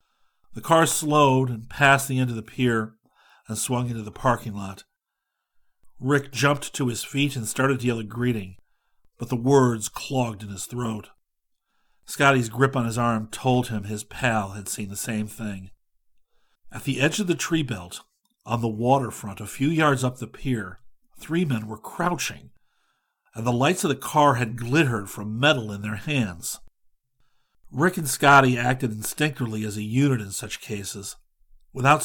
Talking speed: 175 wpm